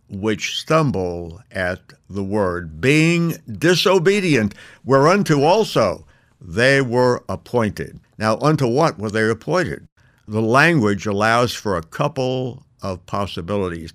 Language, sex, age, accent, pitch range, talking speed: English, male, 60-79, American, 100-140 Hz, 110 wpm